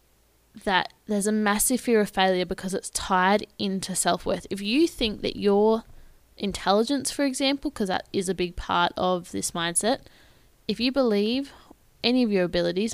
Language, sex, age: English, female, 10-29